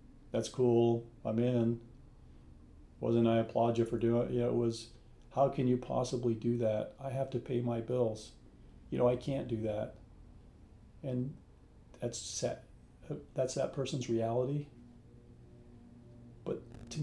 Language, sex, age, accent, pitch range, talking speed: English, male, 40-59, American, 110-120 Hz, 145 wpm